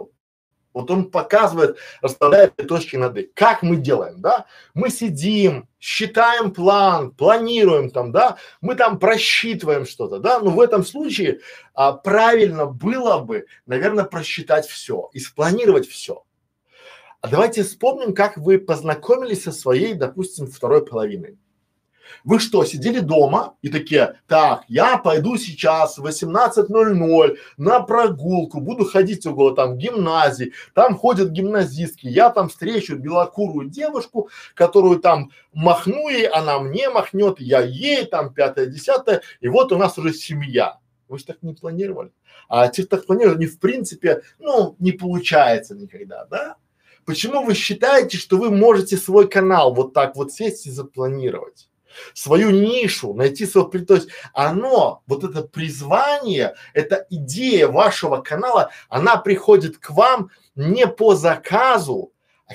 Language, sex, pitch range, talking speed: Russian, male, 155-225 Hz, 135 wpm